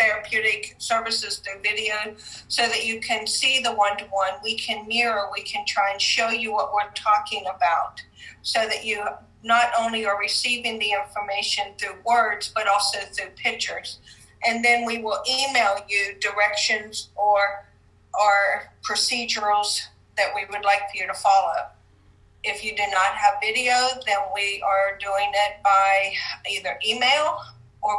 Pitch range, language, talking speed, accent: 195-230 Hz, English, 155 wpm, American